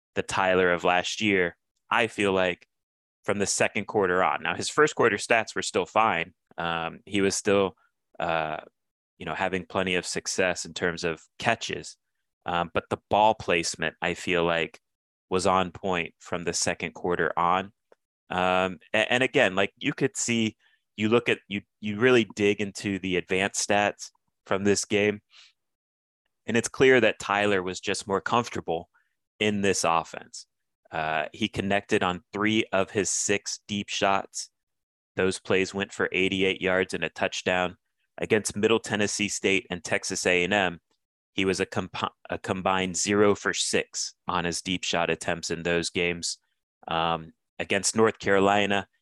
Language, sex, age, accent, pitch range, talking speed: English, male, 30-49, American, 90-105 Hz, 160 wpm